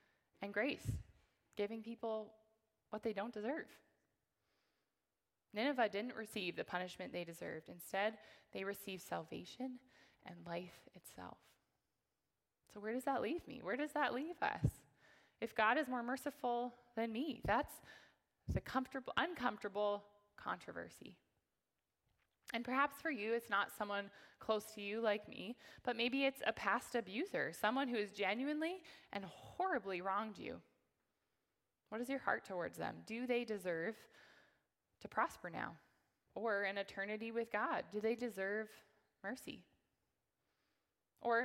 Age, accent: 20-39, American